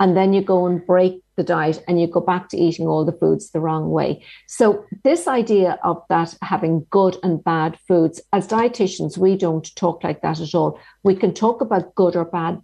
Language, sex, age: English, female, 50-69